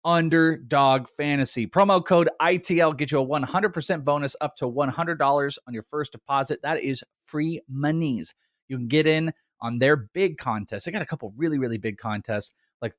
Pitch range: 115-155 Hz